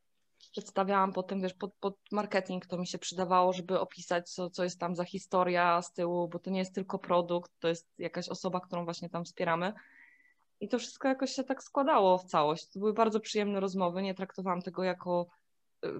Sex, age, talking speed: female, 20-39, 195 wpm